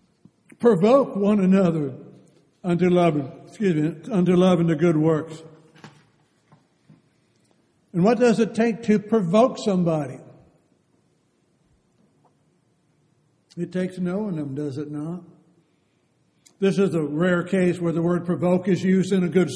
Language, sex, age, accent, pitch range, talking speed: English, male, 60-79, American, 160-195 Hz, 115 wpm